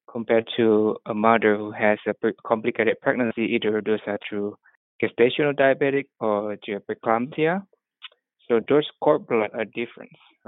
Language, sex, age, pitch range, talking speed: English, male, 20-39, 105-115 Hz, 125 wpm